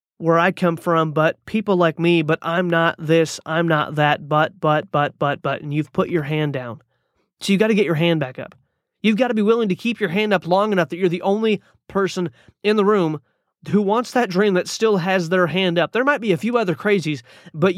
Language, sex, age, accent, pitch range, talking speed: English, male, 30-49, American, 160-195 Hz, 245 wpm